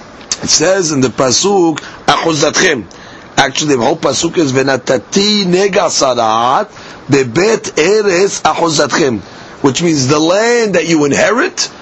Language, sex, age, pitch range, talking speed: English, male, 40-59, 150-205 Hz, 110 wpm